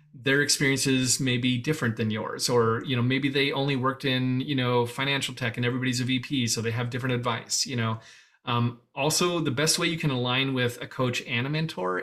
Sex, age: male, 30-49